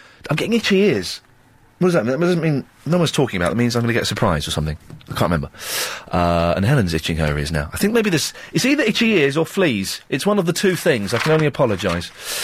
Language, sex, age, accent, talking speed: English, male, 30-49, British, 270 wpm